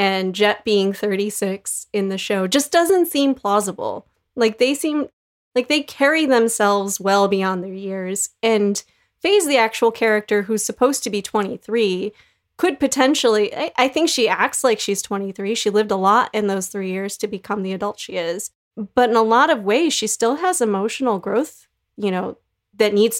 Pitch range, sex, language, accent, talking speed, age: 200-235 Hz, female, English, American, 185 wpm, 30-49